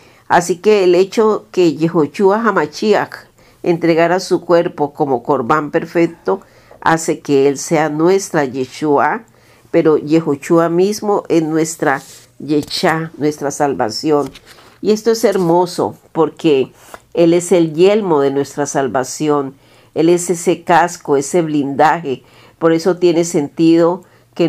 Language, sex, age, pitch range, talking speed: Spanish, female, 50-69, 145-180 Hz, 125 wpm